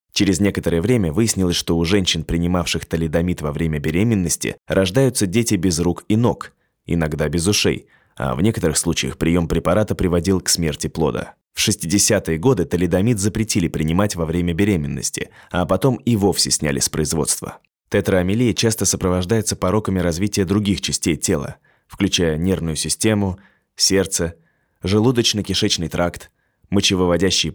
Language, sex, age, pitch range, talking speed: Russian, male, 20-39, 85-105 Hz, 135 wpm